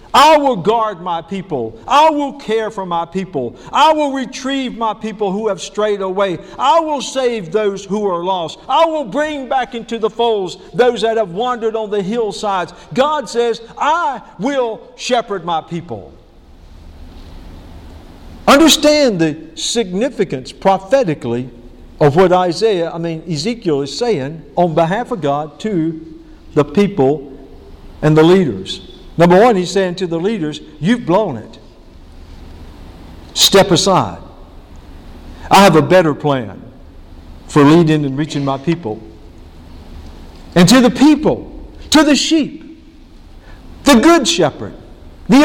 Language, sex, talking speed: English, male, 135 wpm